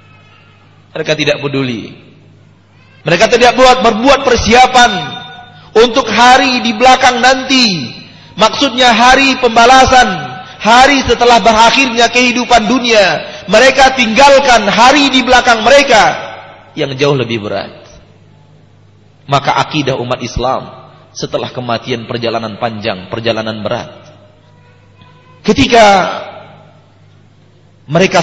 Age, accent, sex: 30-49, Indonesian, male